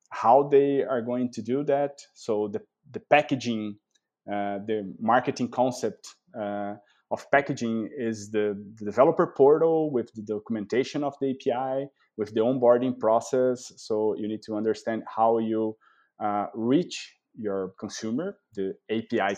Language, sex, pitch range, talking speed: Portuguese, male, 105-125 Hz, 140 wpm